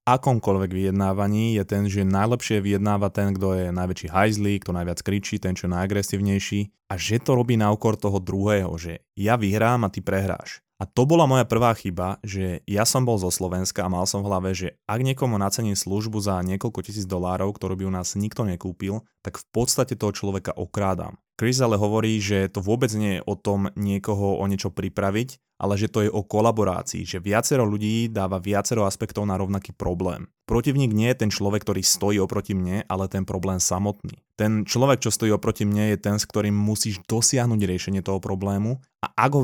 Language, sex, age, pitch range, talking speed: Slovak, male, 20-39, 95-110 Hz, 200 wpm